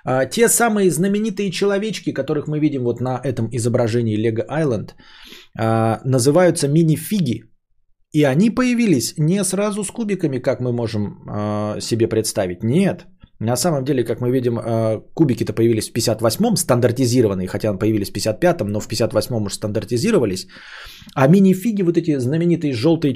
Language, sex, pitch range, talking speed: Bulgarian, male, 115-165 Hz, 150 wpm